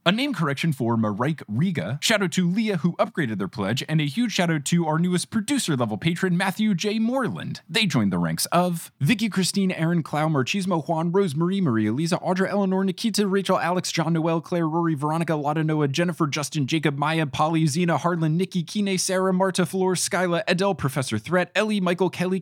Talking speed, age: 195 wpm, 30-49